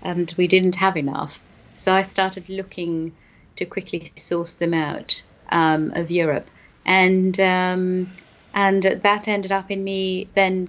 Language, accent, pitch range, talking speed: English, British, 180-215 Hz, 145 wpm